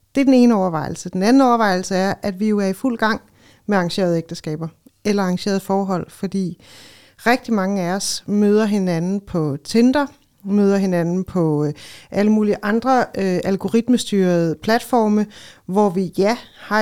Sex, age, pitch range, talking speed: female, 40-59, 195-235 Hz, 155 wpm